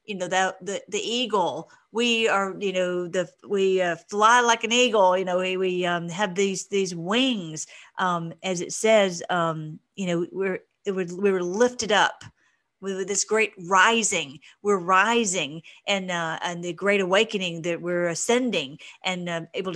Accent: American